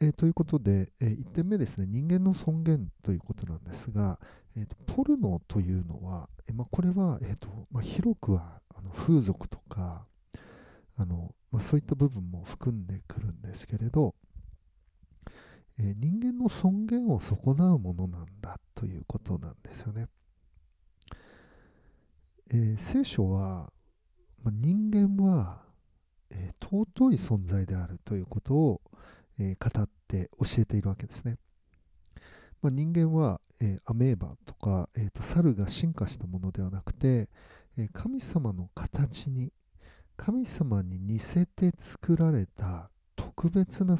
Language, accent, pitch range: Japanese, native, 90-145 Hz